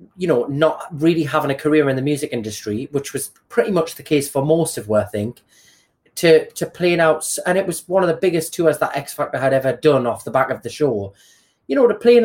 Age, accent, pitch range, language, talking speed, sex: 30-49, British, 150-195 Hz, English, 255 wpm, male